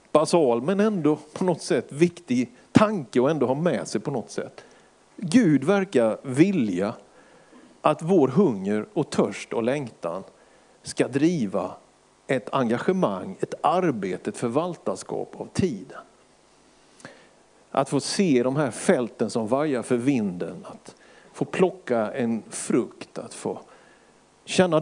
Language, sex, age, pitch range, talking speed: Swedish, male, 50-69, 125-175 Hz, 130 wpm